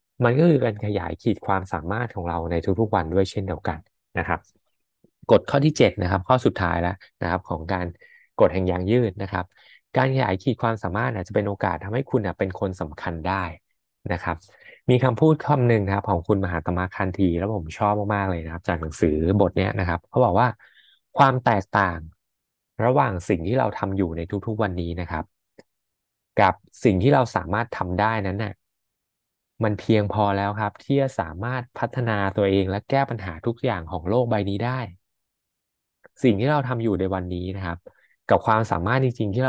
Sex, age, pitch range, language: male, 20-39, 90-115 Hz, Thai